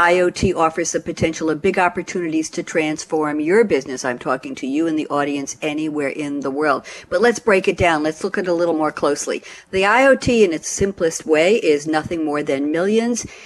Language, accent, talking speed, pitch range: English, American, 205 wpm, 155-220 Hz